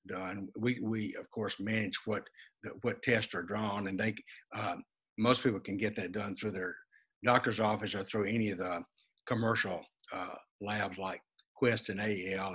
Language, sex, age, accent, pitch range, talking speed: English, male, 60-79, American, 100-125 Hz, 175 wpm